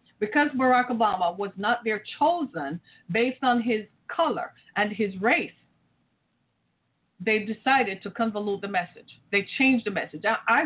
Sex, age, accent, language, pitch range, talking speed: female, 40-59, American, English, 215-265 Hz, 145 wpm